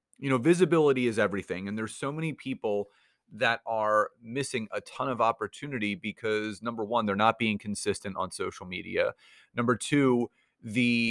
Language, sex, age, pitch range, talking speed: English, male, 30-49, 105-125 Hz, 160 wpm